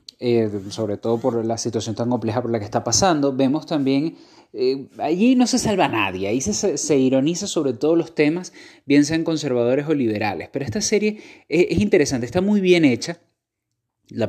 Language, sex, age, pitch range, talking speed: Spanish, male, 30-49, 120-165 Hz, 190 wpm